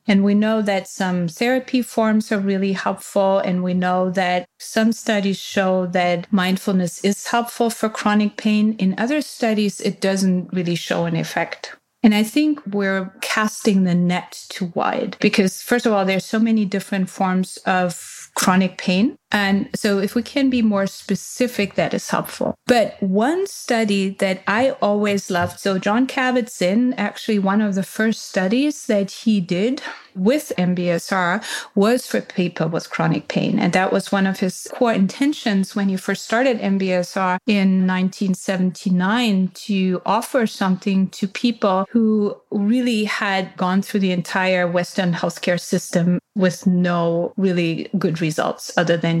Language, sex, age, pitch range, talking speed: English, female, 30-49, 185-220 Hz, 155 wpm